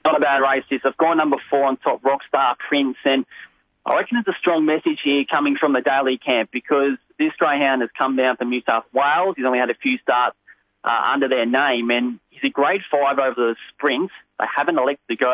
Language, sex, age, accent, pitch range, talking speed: English, male, 30-49, Australian, 125-150 Hz, 230 wpm